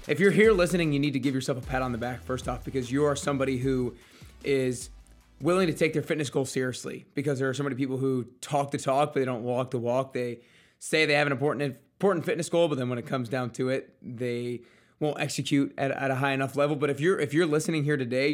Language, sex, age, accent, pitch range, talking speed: English, male, 20-39, American, 130-145 Hz, 255 wpm